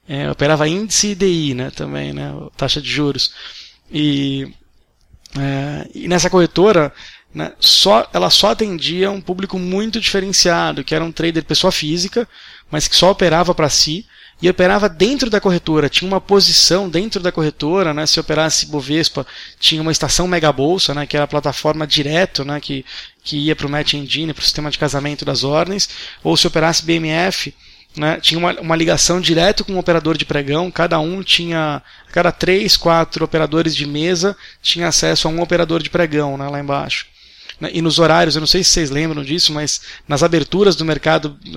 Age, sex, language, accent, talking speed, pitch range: 20-39, male, Portuguese, Brazilian, 180 wpm, 150-175 Hz